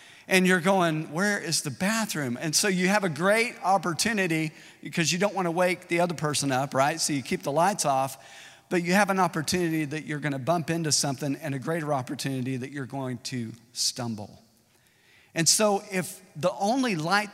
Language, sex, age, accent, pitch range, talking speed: English, male, 50-69, American, 135-180 Hz, 200 wpm